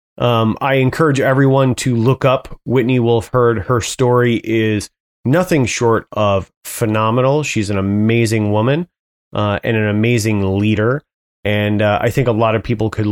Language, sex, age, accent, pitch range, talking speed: English, male, 30-49, American, 95-125 Hz, 160 wpm